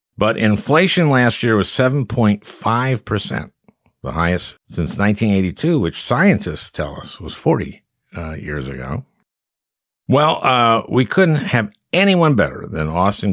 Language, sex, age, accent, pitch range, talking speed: English, male, 50-69, American, 85-125 Hz, 120 wpm